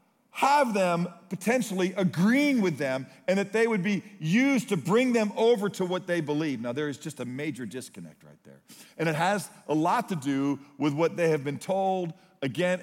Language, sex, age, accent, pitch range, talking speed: English, male, 50-69, American, 140-230 Hz, 200 wpm